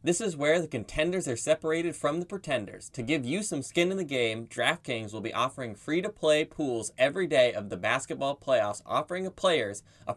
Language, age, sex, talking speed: English, 20-39, male, 195 wpm